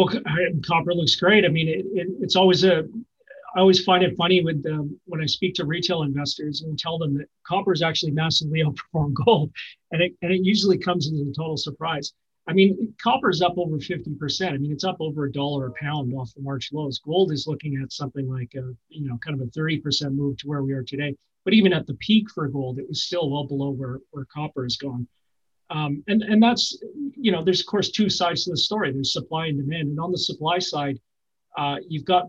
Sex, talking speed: male, 230 wpm